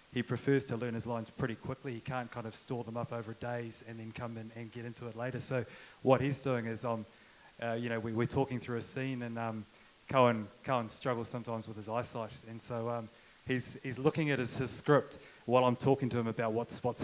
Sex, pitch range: male, 115-130 Hz